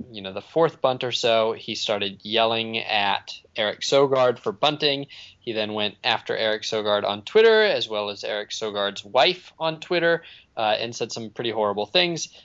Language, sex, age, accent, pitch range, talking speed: English, male, 20-39, American, 105-140 Hz, 185 wpm